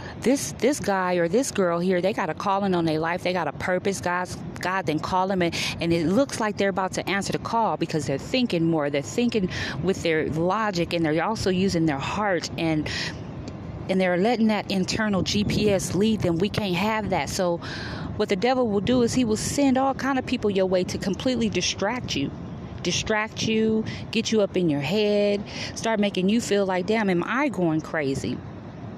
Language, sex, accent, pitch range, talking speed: English, female, American, 170-215 Hz, 210 wpm